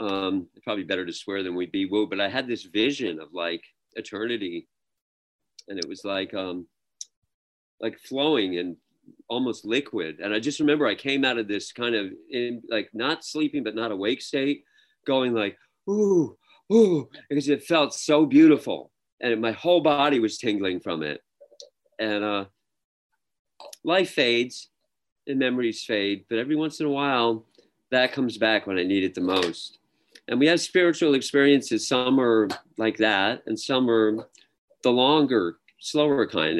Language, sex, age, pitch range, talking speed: English, male, 40-59, 100-150 Hz, 160 wpm